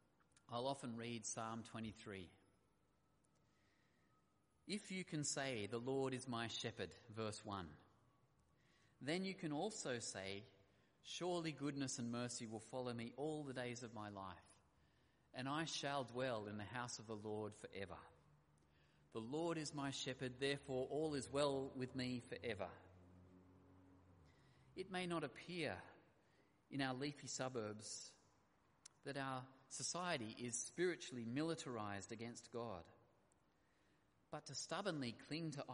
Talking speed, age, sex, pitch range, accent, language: 130 wpm, 30-49, male, 110-140 Hz, Australian, English